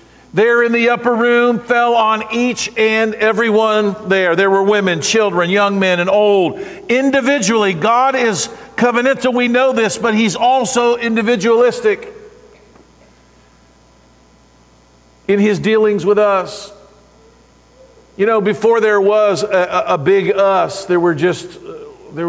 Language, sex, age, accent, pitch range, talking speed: English, male, 50-69, American, 140-215 Hz, 130 wpm